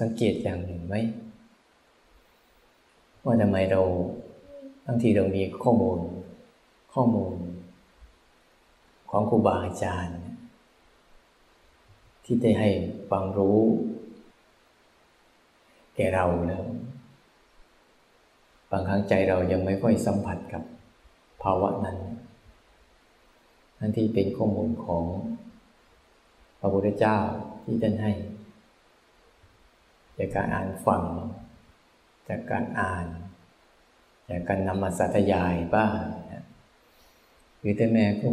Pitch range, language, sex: 95-115 Hz, Thai, male